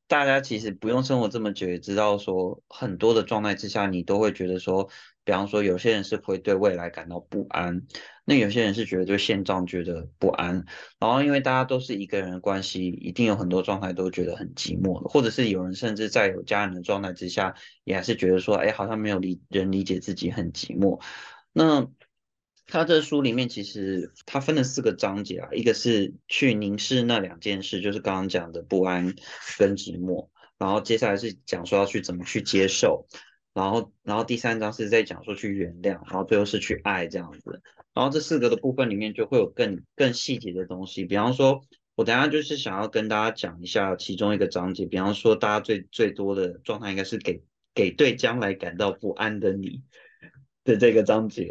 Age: 20-39